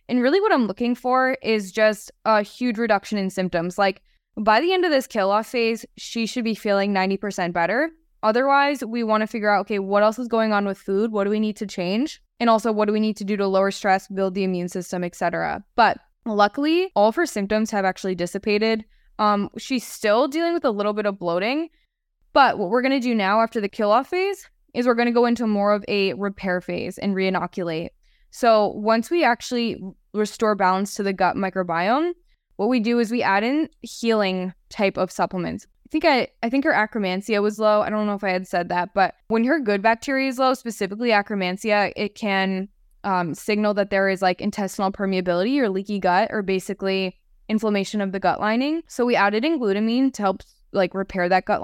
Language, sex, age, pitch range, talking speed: English, female, 10-29, 195-235 Hz, 215 wpm